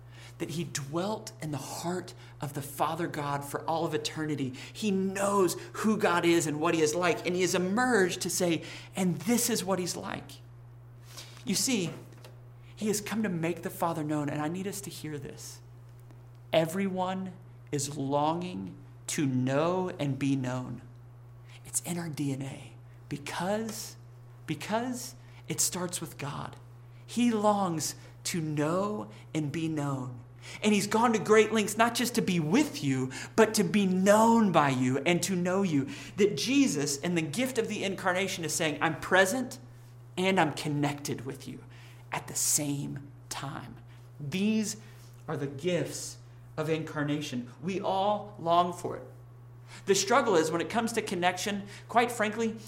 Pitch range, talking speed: 125-190 Hz, 160 wpm